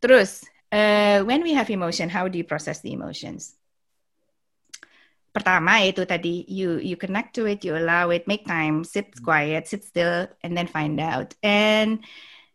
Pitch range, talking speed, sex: 175-220 Hz, 165 wpm, female